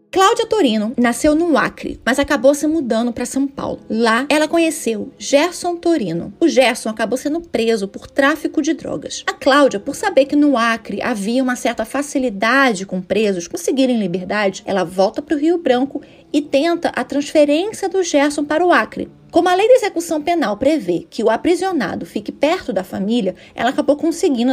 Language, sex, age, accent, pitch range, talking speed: Portuguese, female, 20-39, Brazilian, 240-325 Hz, 180 wpm